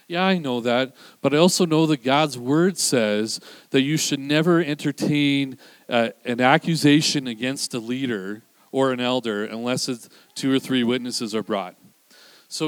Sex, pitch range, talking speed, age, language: male, 125-150 Hz, 165 wpm, 40-59, English